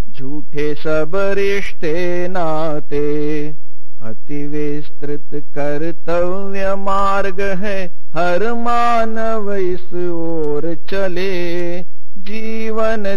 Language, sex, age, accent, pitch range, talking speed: Hindi, male, 50-69, native, 175-225 Hz, 60 wpm